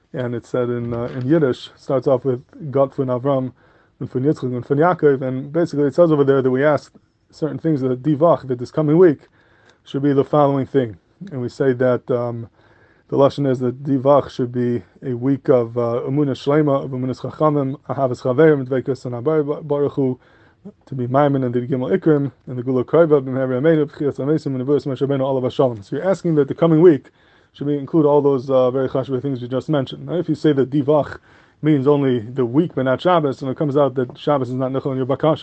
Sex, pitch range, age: male, 125-145 Hz, 20-39